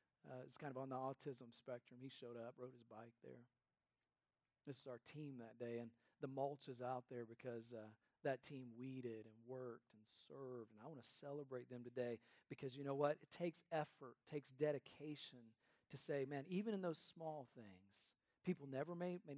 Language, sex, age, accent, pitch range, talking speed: English, male, 40-59, American, 125-205 Hz, 200 wpm